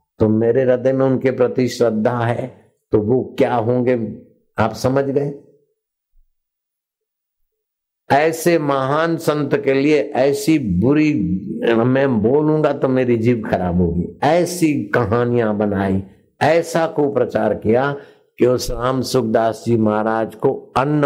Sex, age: male, 60-79